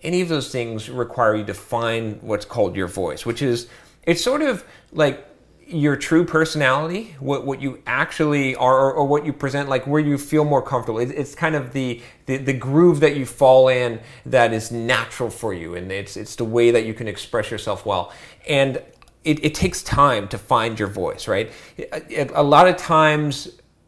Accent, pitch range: American, 125-170 Hz